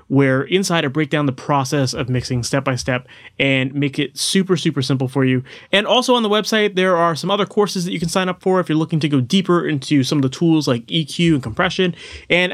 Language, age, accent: English, 30-49, American